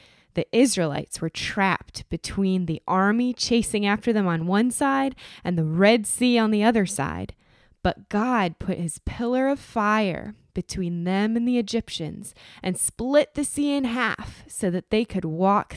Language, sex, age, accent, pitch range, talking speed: English, female, 20-39, American, 170-240 Hz, 170 wpm